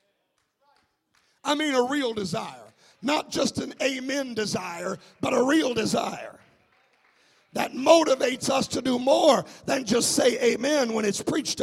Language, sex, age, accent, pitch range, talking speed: English, male, 50-69, American, 200-255 Hz, 140 wpm